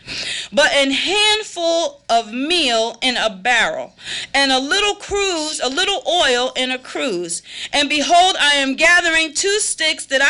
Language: English